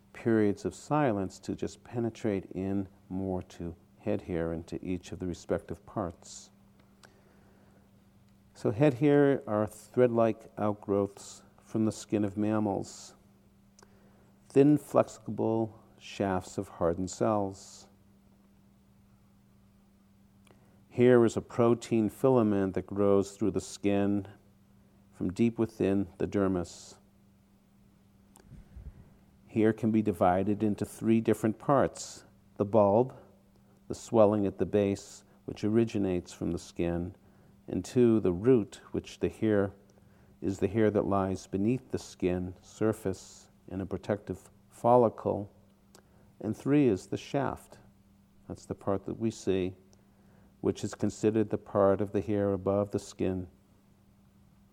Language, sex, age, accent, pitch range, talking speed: English, male, 50-69, American, 100-110 Hz, 125 wpm